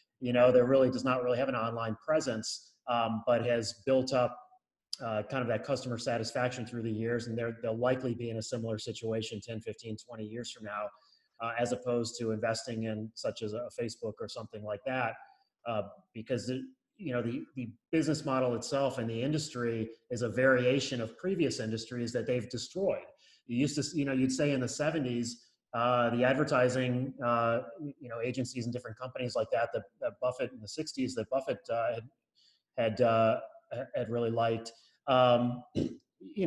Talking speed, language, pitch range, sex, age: 190 wpm, English, 115-130 Hz, male, 30-49